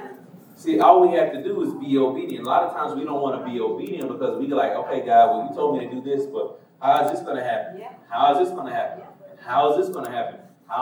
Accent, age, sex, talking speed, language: American, 30-49, male, 285 wpm, English